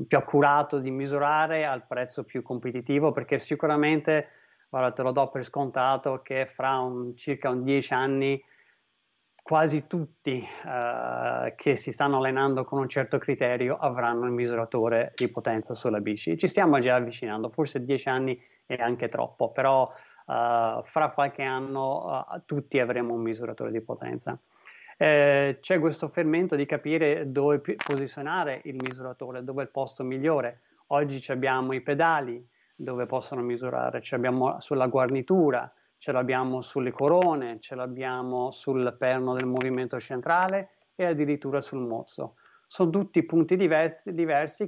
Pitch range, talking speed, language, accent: 125-145 Hz, 145 wpm, Italian, native